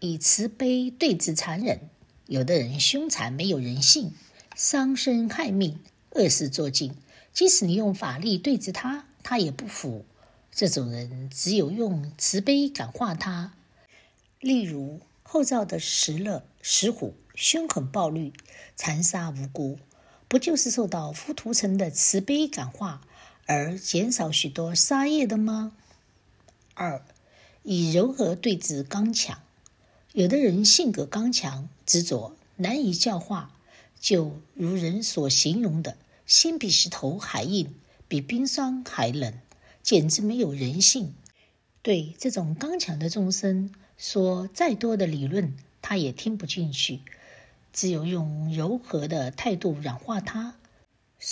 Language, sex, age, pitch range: Chinese, female, 60-79, 155-230 Hz